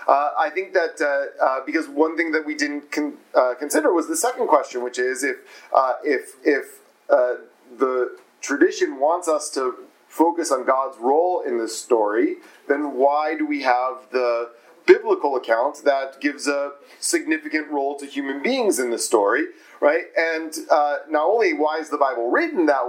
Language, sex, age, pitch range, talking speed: English, male, 30-49, 140-195 Hz, 180 wpm